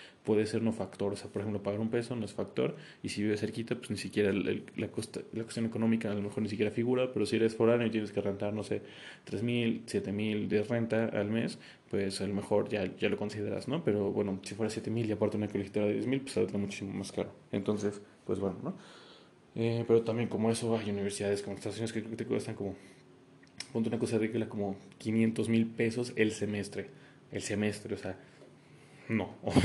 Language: Spanish